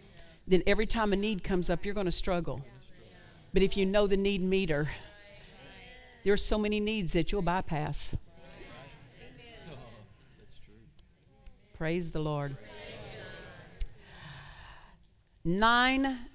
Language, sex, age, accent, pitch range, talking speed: English, female, 50-69, American, 140-200 Hz, 110 wpm